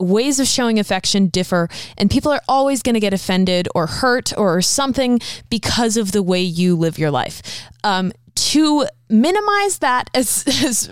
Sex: female